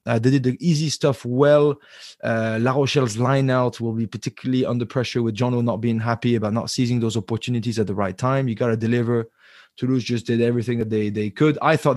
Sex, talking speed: male, 225 wpm